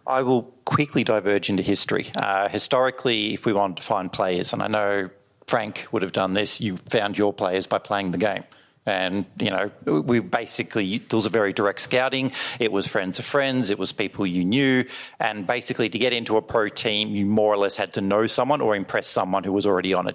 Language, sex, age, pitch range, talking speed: English, male, 40-59, 100-120 Hz, 225 wpm